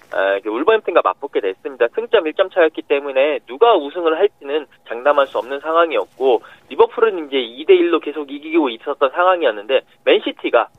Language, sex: Korean, male